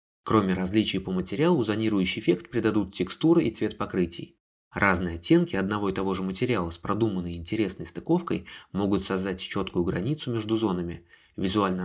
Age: 20-39